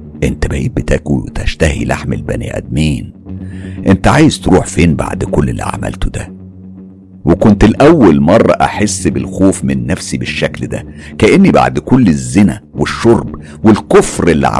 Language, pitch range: Arabic, 75-95 Hz